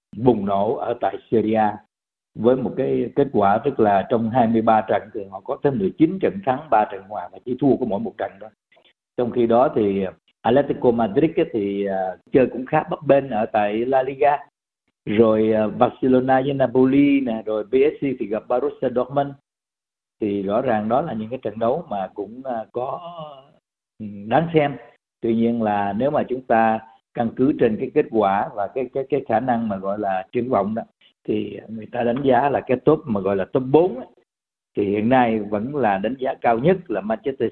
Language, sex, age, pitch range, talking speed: Vietnamese, male, 50-69, 110-135 Hz, 195 wpm